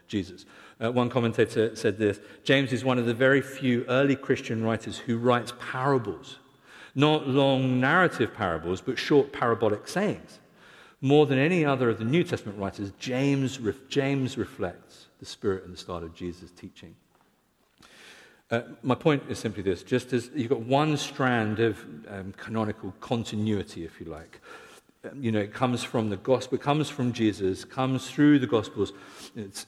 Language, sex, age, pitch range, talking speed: English, male, 50-69, 105-130 Hz, 170 wpm